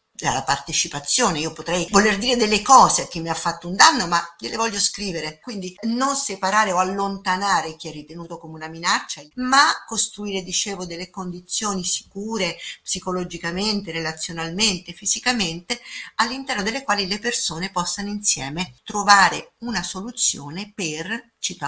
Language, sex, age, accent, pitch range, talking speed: Italian, female, 50-69, native, 165-205 Hz, 140 wpm